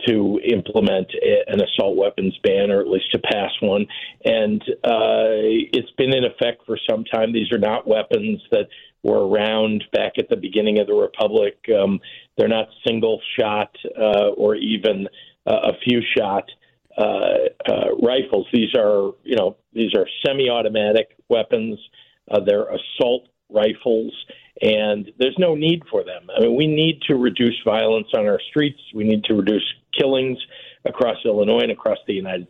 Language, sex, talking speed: English, male, 165 wpm